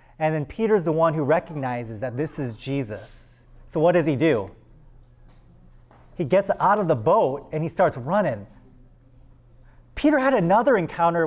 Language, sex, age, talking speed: English, male, 30-49, 160 wpm